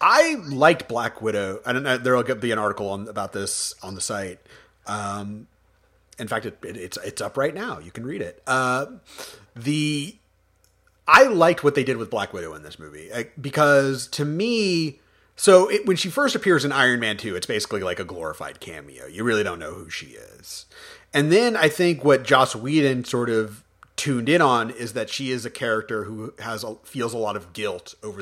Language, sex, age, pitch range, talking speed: English, male, 30-49, 105-140 Hz, 210 wpm